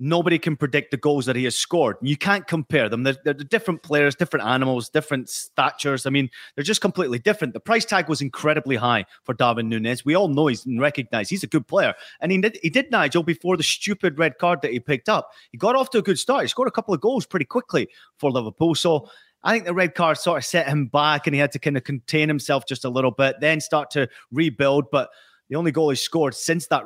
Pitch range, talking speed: 130-160 Hz, 250 wpm